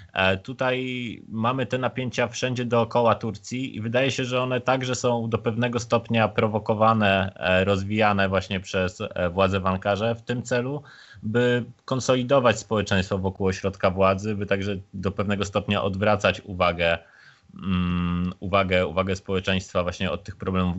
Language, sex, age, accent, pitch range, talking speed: Polish, male, 20-39, native, 95-120 Hz, 135 wpm